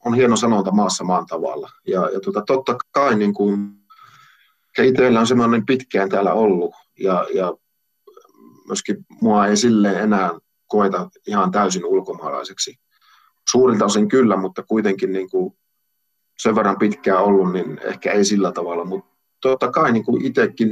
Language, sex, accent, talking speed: Finnish, male, native, 150 wpm